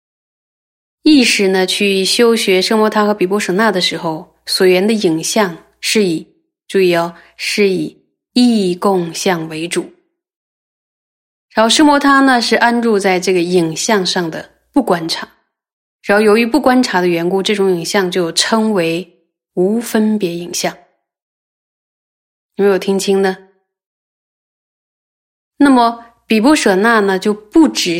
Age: 20-39